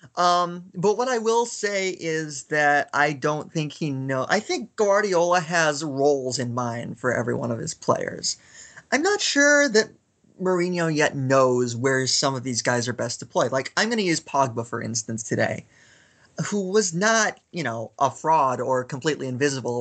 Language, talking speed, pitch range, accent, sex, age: English, 180 wpm, 125-175 Hz, American, male, 30-49